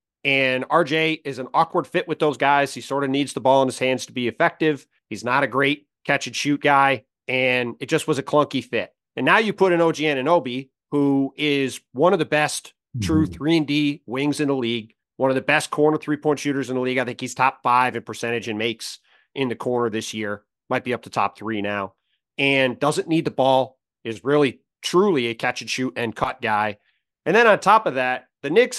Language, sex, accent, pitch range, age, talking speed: English, male, American, 125-155 Hz, 30-49, 235 wpm